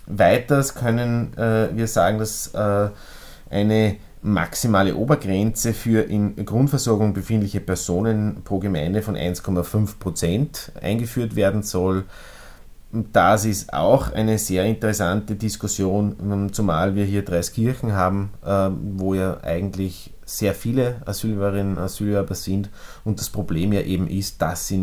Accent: Austrian